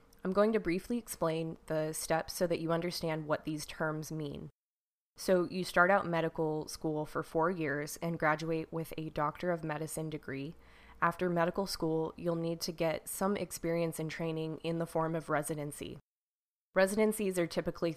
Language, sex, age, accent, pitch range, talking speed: English, female, 20-39, American, 160-180 Hz, 170 wpm